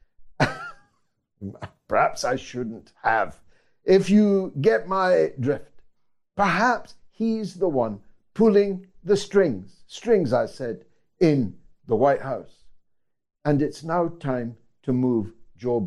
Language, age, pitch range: English, 60-79, 140-200 Hz